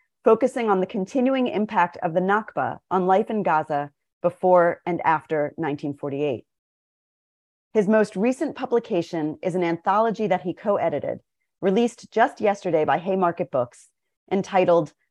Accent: American